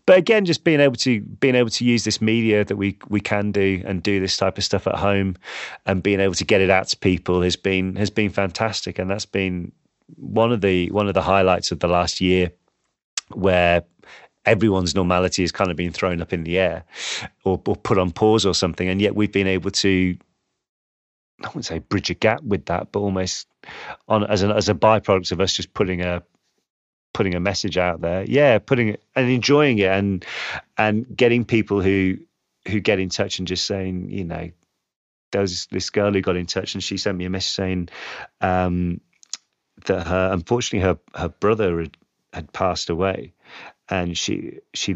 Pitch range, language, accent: 90-105 Hz, German, British